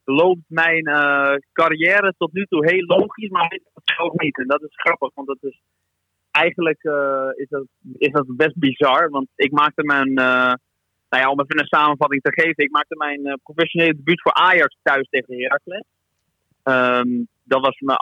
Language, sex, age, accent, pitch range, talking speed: Dutch, male, 30-49, Dutch, 125-155 Hz, 170 wpm